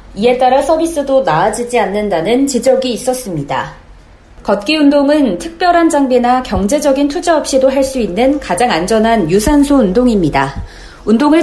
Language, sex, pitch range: Korean, female, 210-290 Hz